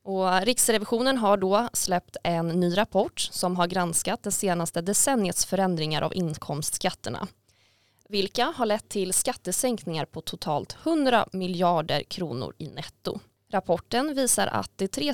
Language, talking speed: Swedish, 130 wpm